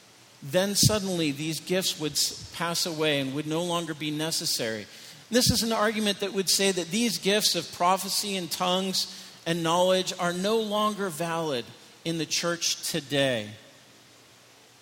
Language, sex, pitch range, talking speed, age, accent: English, male, 160-210 Hz, 150 wpm, 40-59, American